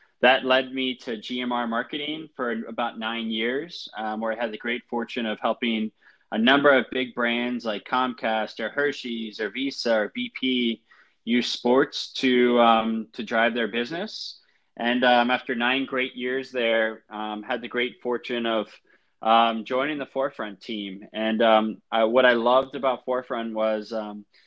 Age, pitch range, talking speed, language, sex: 20-39, 110-125 Hz, 165 wpm, English, male